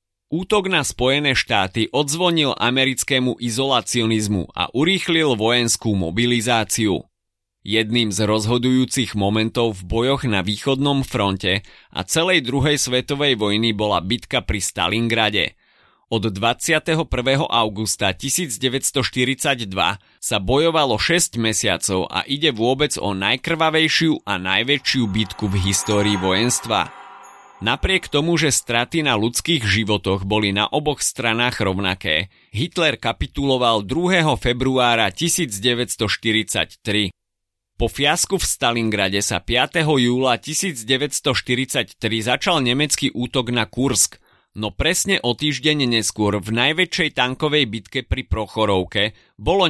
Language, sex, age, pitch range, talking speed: Slovak, male, 30-49, 105-140 Hz, 110 wpm